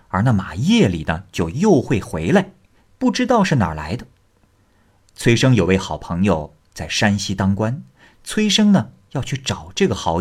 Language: Chinese